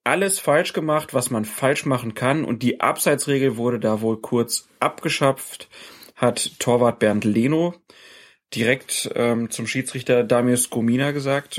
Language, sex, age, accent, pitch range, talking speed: German, male, 30-49, German, 120-145 Hz, 140 wpm